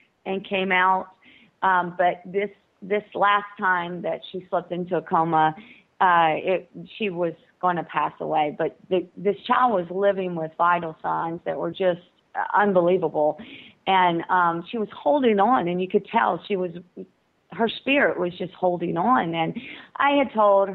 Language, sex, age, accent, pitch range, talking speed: English, female, 40-59, American, 175-220 Hz, 170 wpm